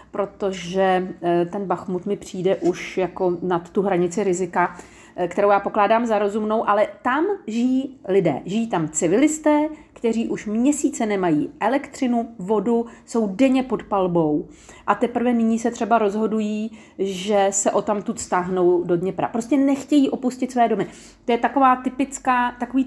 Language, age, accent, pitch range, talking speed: Czech, 40-59, native, 200-255 Hz, 145 wpm